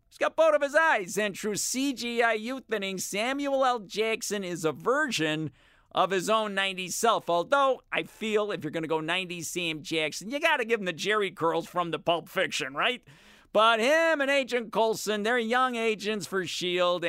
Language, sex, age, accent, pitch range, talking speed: English, male, 40-59, American, 170-235 Hz, 195 wpm